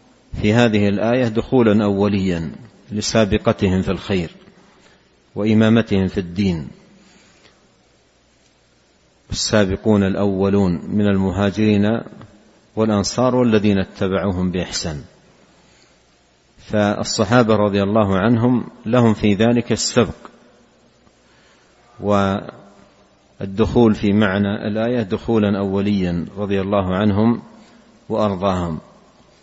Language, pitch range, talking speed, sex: Arabic, 100-115 Hz, 75 wpm, male